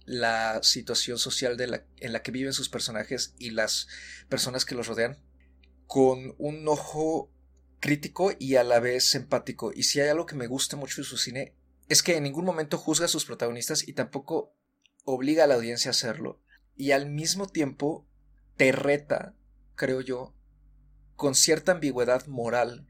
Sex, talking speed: male, 175 wpm